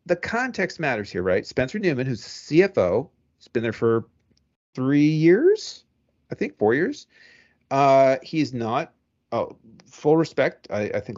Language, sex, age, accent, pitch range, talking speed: English, male, 40-59, American, 110-165 Hz, 150 wpm